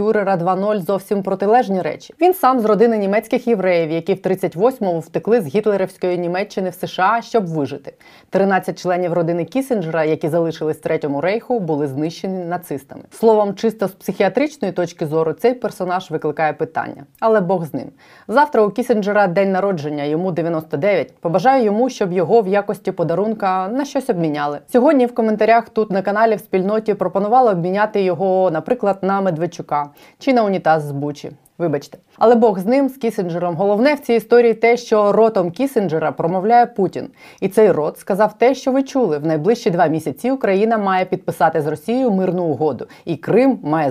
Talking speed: 165 wpm